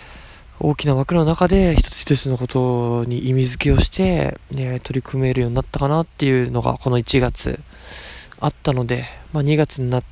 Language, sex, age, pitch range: Japanese, male, 20-39, 125-140 Hz